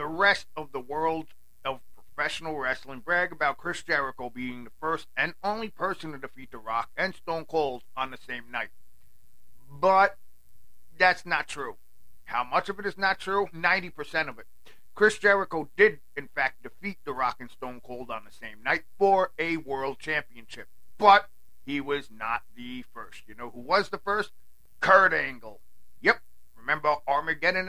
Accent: American